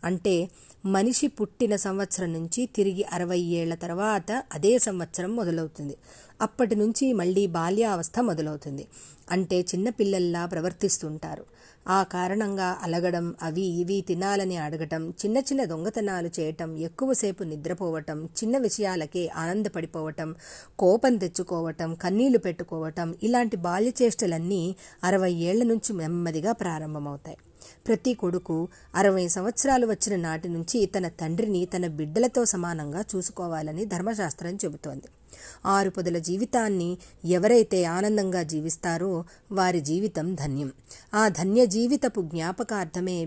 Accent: native